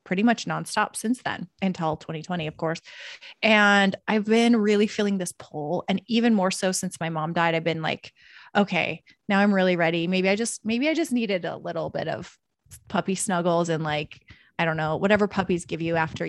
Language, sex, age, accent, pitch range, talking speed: English, female, 20-39, American, 175-225 Hz, 205 wpm